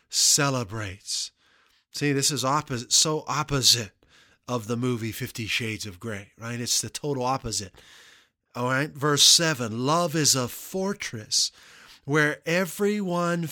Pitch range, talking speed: 115-150 Hz, 130 wpm